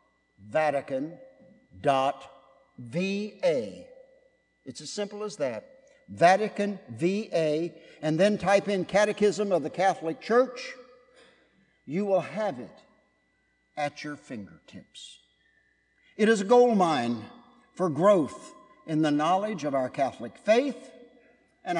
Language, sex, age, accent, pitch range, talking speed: English, male, 60-79, American, 150-240 Hz, 105 wpm